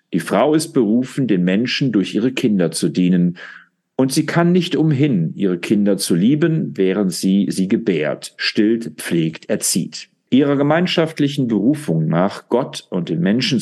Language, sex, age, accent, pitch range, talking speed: German, male, 50-69, German, 100-155 Hz, 155 wpm